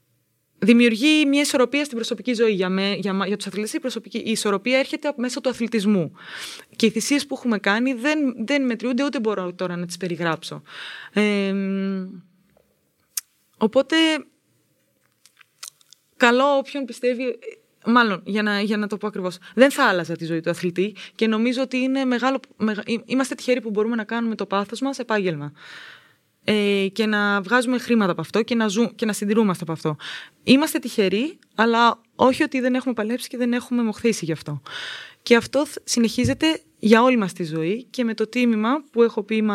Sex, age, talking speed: female, 20-39, 170 wpm